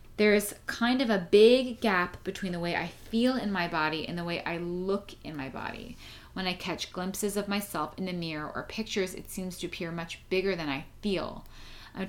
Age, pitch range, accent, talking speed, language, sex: 30-49, 170-225 Hz, American, 215 wpm, English, female